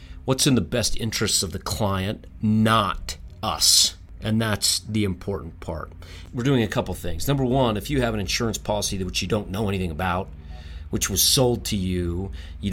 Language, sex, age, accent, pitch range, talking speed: English, male, 40-59, American, 90-110 Hz, 190 wpm